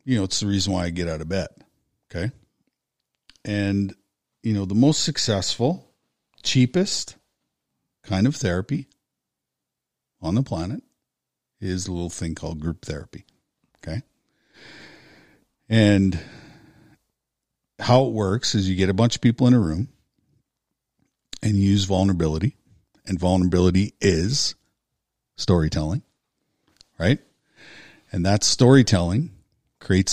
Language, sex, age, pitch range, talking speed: English, male, 50-69, 90-115 Hz, 120 wpm